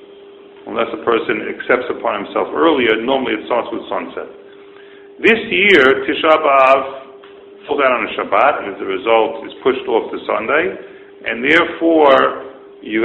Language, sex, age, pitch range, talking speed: English, male, 50-69, 330-400 Hz, 145 wpm